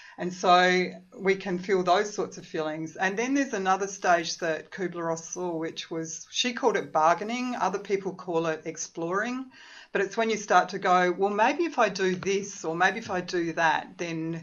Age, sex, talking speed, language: 40-59, female, 200 wpm, English